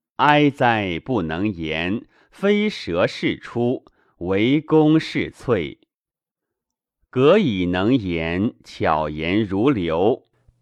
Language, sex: Chinese, male